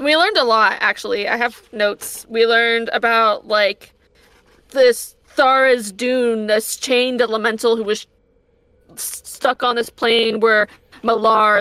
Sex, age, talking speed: female, 20-39, 140 wpm